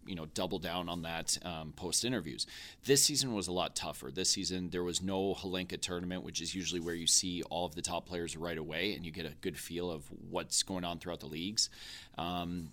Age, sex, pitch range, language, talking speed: 30-49, male, 85-105 Hz, English, 225 wpm